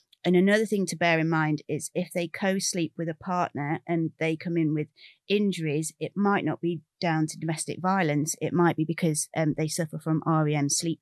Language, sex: English, female